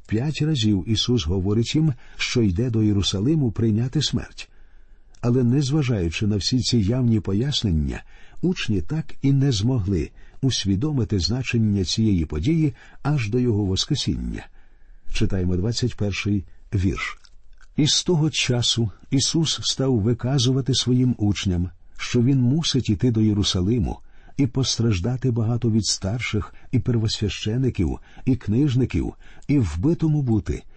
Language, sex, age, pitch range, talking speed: Ukrainian, male, 50-69, 100-130 Hz, 120 wpm